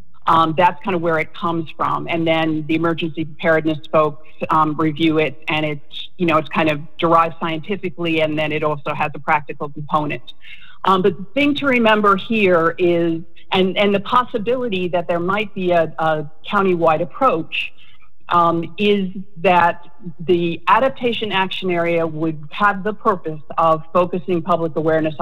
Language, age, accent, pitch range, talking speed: English, 40-59, American, 160-200 Hz, 155 wpm